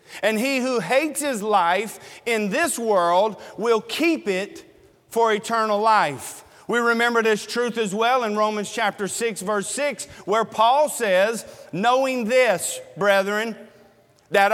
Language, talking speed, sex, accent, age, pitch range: English, 140 wpm, male, American, 40-59, 205-245 Hz